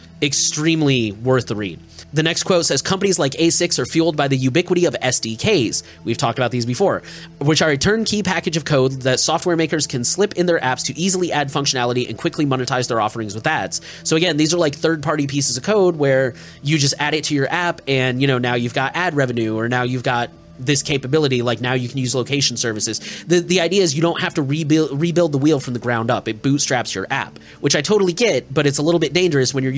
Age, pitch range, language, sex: 20-39, 125-175 Hz, English, male